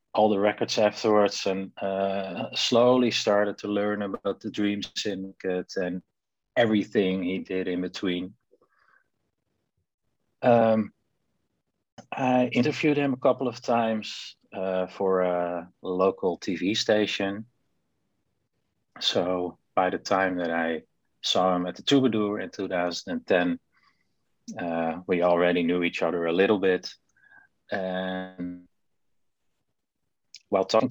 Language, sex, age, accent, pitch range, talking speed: English, male, 30-49, Dutch, 90-115 Hz, 115 wpm